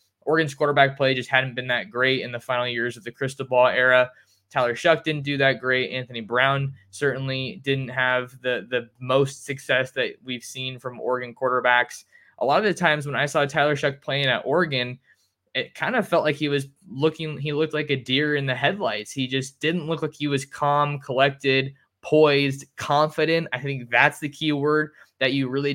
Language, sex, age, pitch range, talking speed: English, male, 20-39, 130-150 Hz, 205 wpm